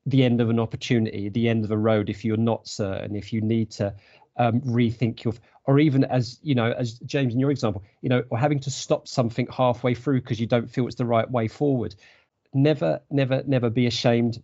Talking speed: 225 wpm